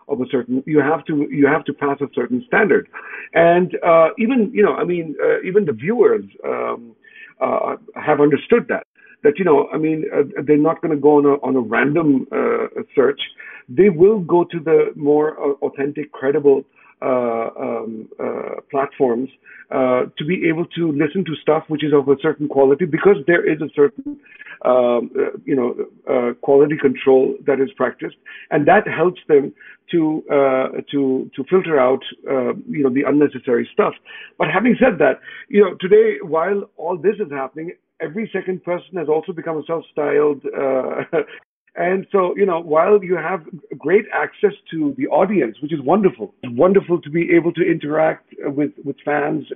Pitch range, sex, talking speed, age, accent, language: 140-200 Hz, male, 185 wpm, 50-69, native, Hindi